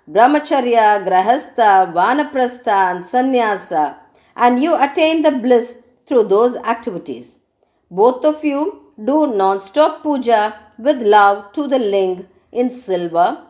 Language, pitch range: Tamil, 205-295 Hz